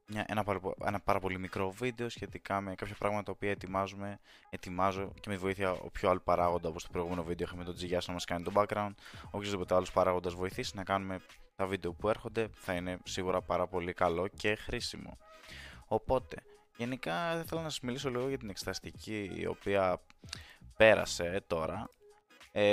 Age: 20-39